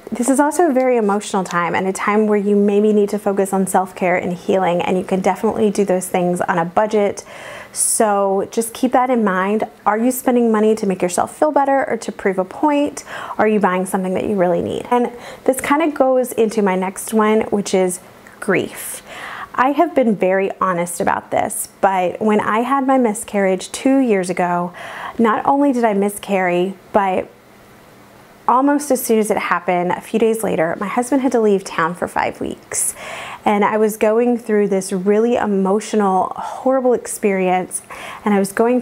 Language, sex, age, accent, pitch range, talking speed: English, female, 30-49, American, 190-240 Hz, 195 wpm